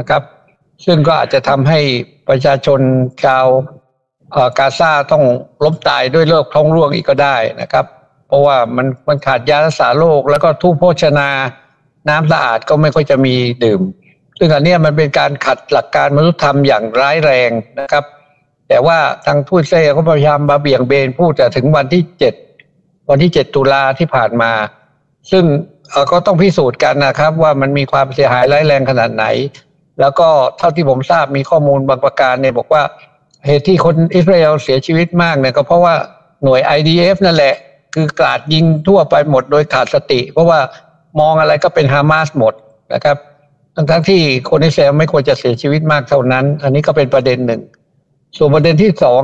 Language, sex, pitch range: Thai, male, 135-165 Hz